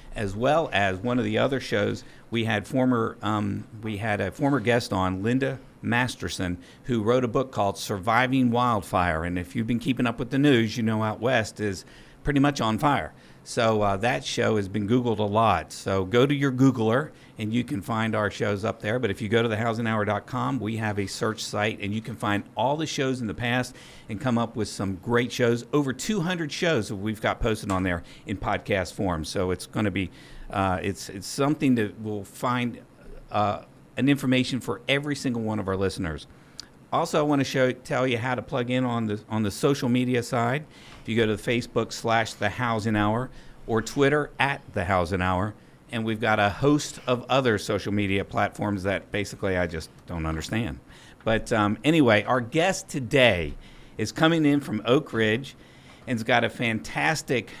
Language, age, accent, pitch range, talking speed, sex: English, 50-69, American, 105-130 Hz, 205 wpm, male